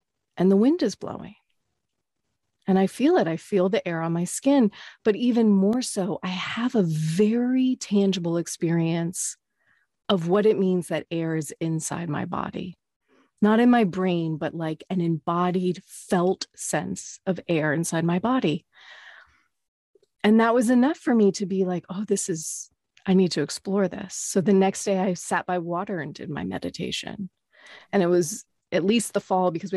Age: 30-49